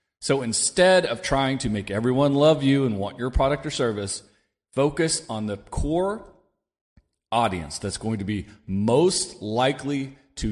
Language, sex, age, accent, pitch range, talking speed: English, male, 40-59, American, 105-140 Hz, 155 wpm